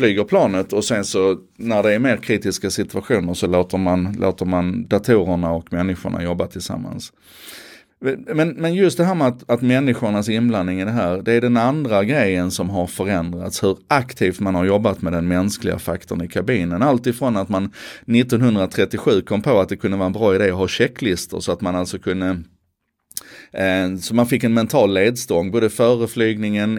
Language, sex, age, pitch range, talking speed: Swedish, male, 30-49, 95-120 Hz, 185 wpm